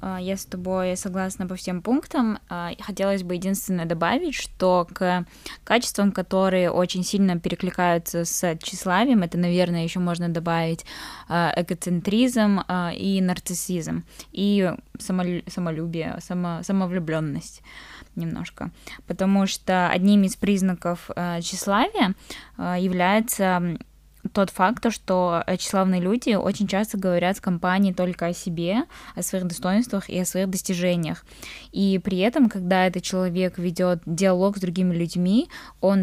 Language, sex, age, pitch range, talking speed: Russian, female, 10-29, 175-195 Hz, 120 wpm